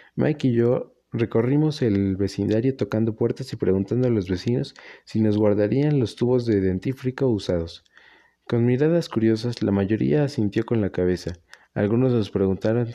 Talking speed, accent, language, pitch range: 155 wpm, Mexican, Spanish, 100-130 Hz